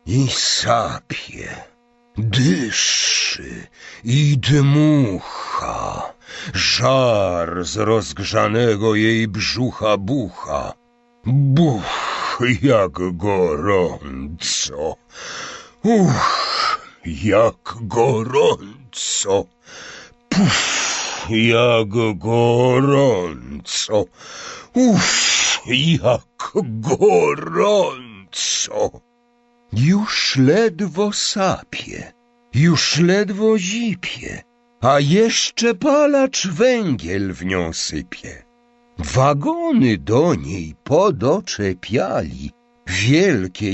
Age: 60-79